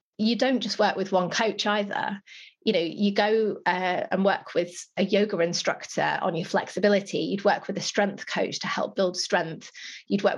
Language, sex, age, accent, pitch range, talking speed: English, female, 30-49, British, 185-215 Hz, 195 wpm